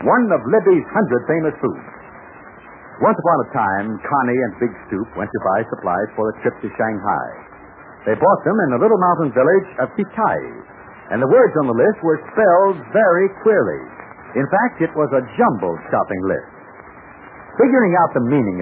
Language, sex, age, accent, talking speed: English, male, 60-79, American, 175 wpm